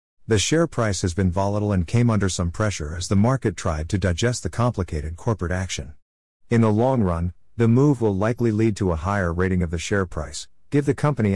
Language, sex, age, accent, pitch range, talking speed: English, male, 50-69, American, 85-110 Hz, 215 wpm